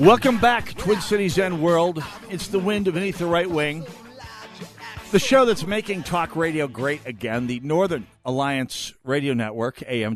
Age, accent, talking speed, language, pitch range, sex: 50-69, American, 160 wpm, English, 110-170 Hz, male